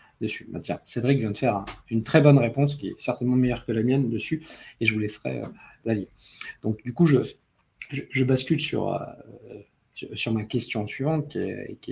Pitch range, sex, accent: 115-145 Hz, male, French